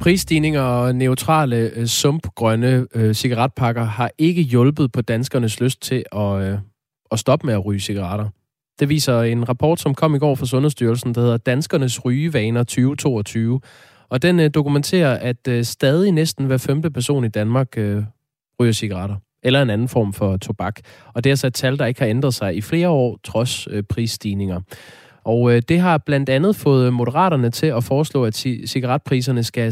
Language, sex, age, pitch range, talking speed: Danish, male, 20-39, 115-140 Hz, 180 wpm